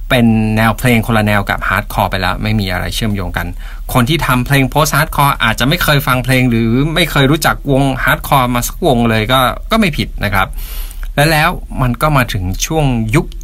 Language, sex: Thai, male